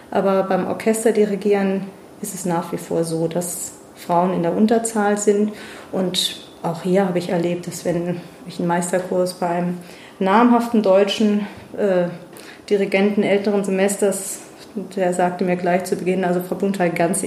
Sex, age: female, 30-49